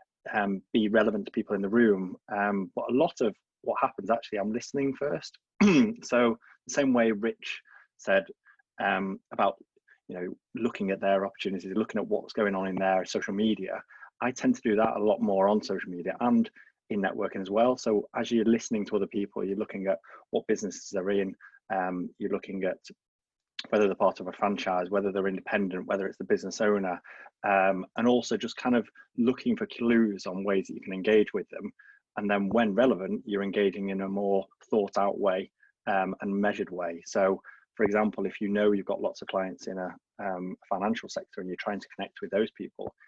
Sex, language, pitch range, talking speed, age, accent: male, English, 95-115 Hz, 205 wpm, 20-39, British